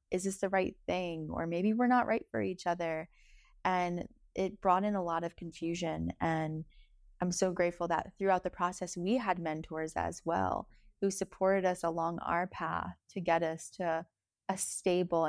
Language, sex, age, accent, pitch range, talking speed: English, female, 20-39, American, 165-190 Hz, 180 wpm